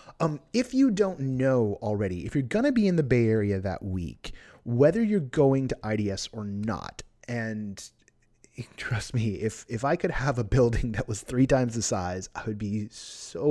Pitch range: 105-145 Hz